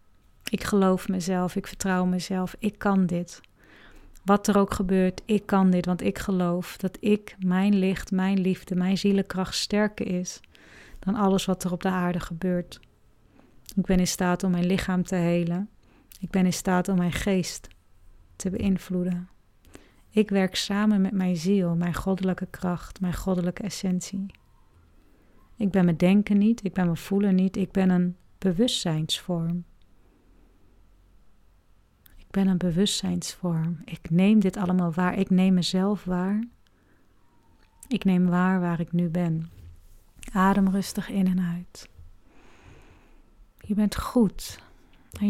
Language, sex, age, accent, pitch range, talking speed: Dutch, female, 40-59, Dutch, 175-195 Hz, 145 wpm